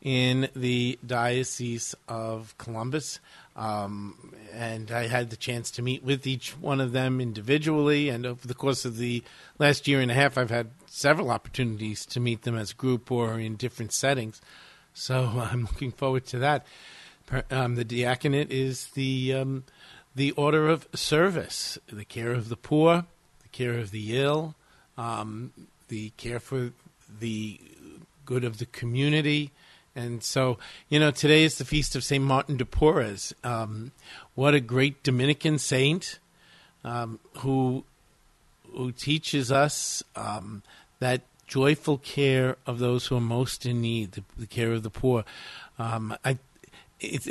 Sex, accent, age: male, American, 50-69